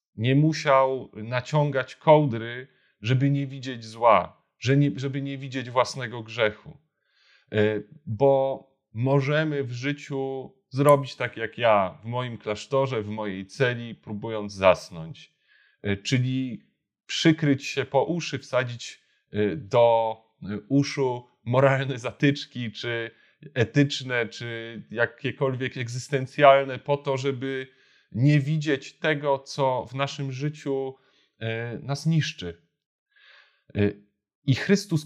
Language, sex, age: Polish, male, 30-49